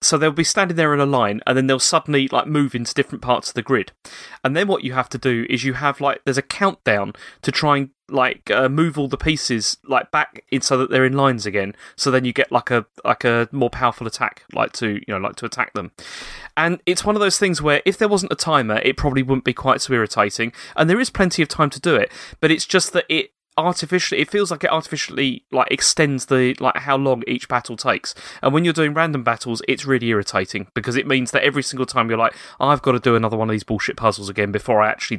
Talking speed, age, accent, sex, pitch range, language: 255 wpm, 30-49, British, male, 115-150 Hz, English